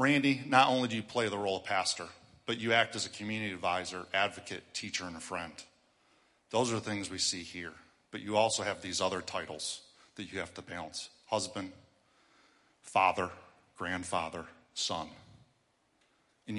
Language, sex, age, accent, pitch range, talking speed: English, male, 40-59, American, 90-110 Hz, 165 wpm